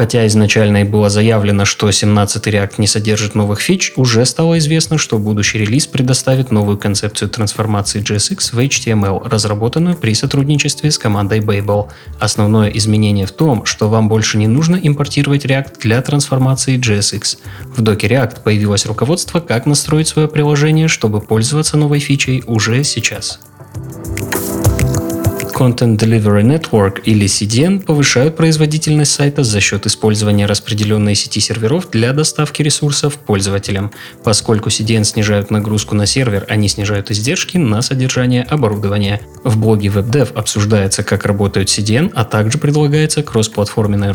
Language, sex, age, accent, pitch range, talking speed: Russian, male, 20-39, native, 105-140 Hz, 135 wpm